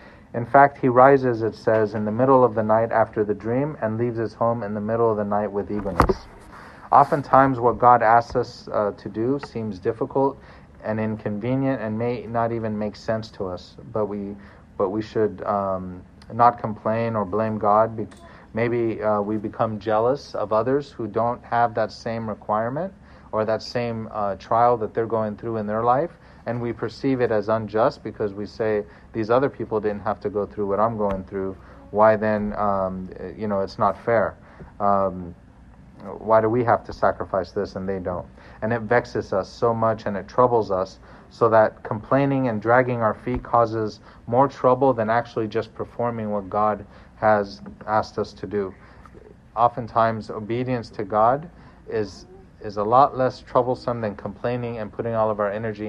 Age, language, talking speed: 40-59, English, 185 wpm